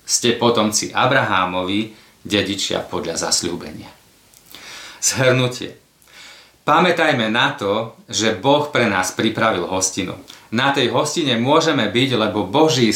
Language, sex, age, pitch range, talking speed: Slovak, male, 30-49, 105-135 Hz, 105 wpm